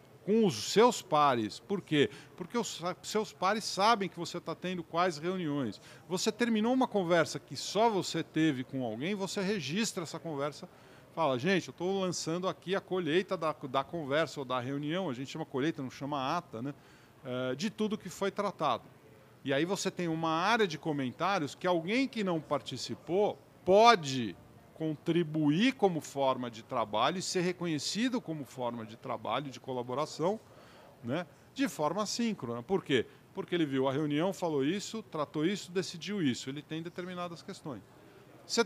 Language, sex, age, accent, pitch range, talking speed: Portuguese, male, 40-59, Brazilian, 140-195 Hz, 170 wpm